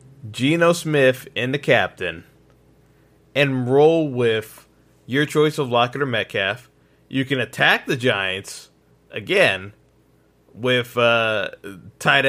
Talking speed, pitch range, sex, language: 110 wpm, 120-145 Hz, male, English